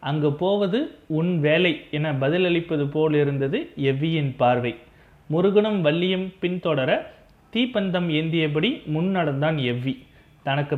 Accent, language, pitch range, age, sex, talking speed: native, Tamil, 140-185 Hz, 30-49, male, 110 wpm